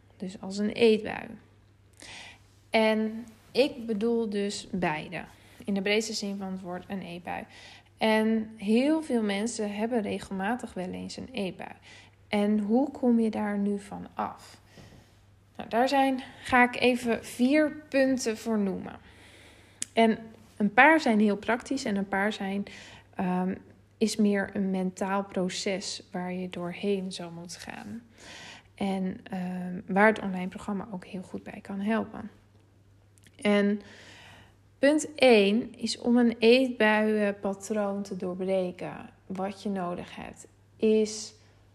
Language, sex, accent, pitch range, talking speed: Dutch, female, Dutch, 175-225 Hz, 130 wpm